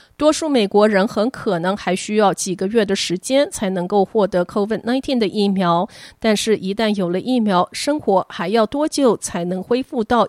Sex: female